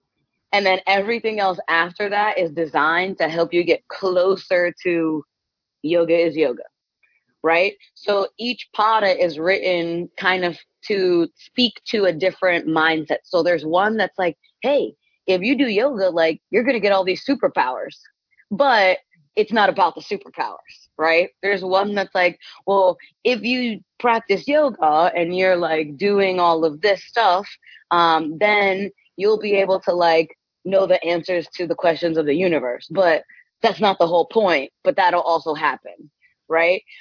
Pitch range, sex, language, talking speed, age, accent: 170-210 Hz, female, English, 160 wpm, 20-39, American